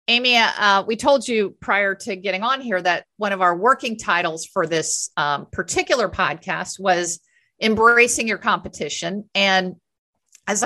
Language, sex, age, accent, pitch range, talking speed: English, female, 50-69, American, 175-225 Hz, 150 wpm